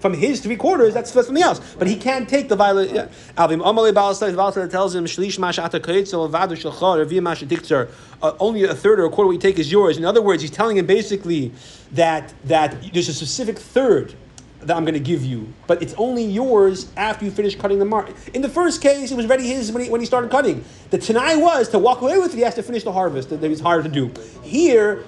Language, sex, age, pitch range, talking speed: English, male, 30-49, 185-255 Hz, 210 wpm